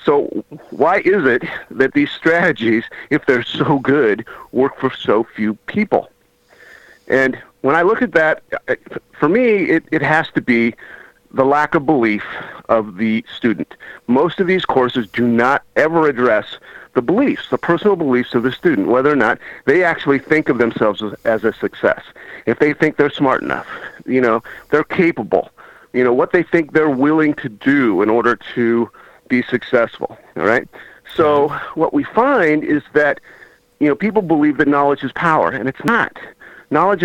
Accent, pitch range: American, 125-170 Hz